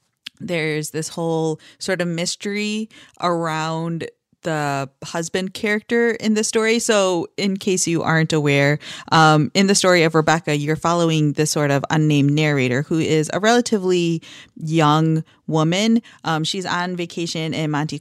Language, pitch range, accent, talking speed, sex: English, 145-175 Hz, American, 145 wpm, female